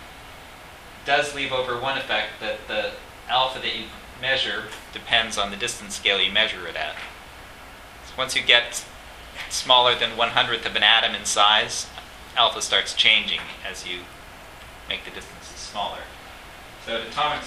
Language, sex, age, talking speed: English, male, 30-49, 150 wpm